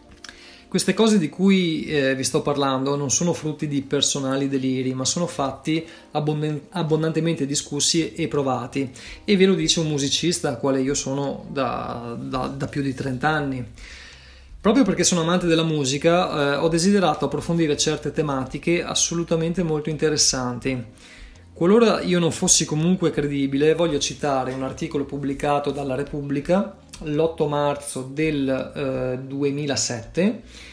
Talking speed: 135 wpm